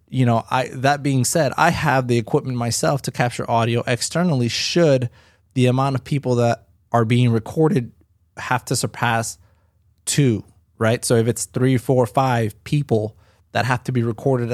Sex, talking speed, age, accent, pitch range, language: male, 170 wpm, 20-39, American, 110-130 Hz, English